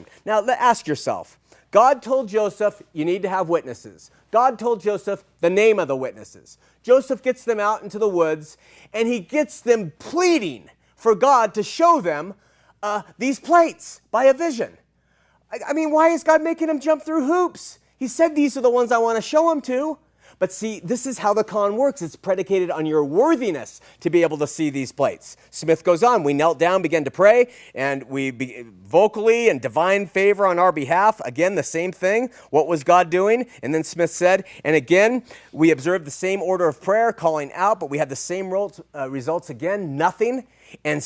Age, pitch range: 30-49, 155-235 Hz